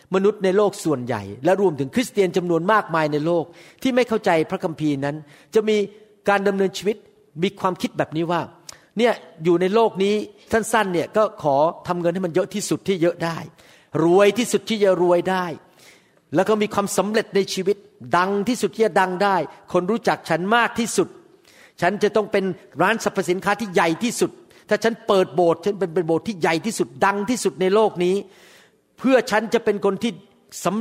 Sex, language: male, Thai